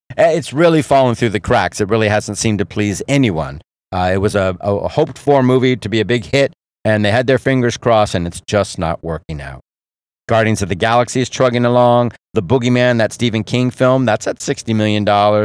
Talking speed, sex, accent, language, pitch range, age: 210 wpm, male, American, English, 100-125 Hz, 50-69